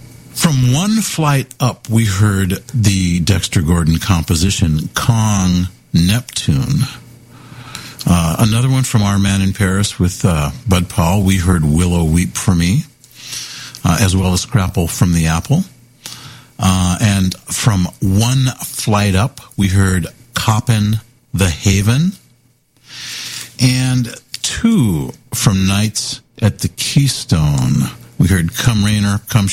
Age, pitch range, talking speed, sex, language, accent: 50-69, 95-130 Hz, 120 wpm, male, English, American